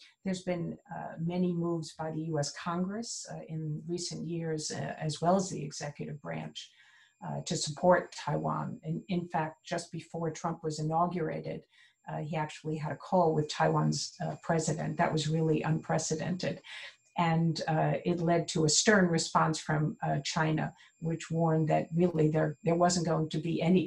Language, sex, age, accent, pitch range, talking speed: English, female, 50-69, American, 155-175 Hz, 170 wpm